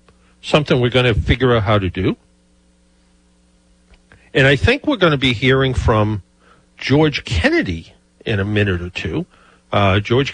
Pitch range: 95-135 Hz